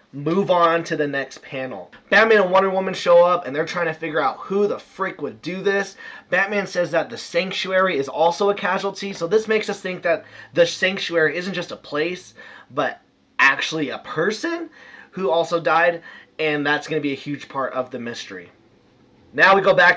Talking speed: 200 wpm